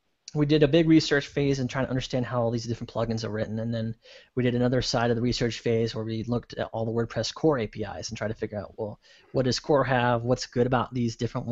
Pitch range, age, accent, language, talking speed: 115-135 Hz, 20-39, American, English, 265 wpm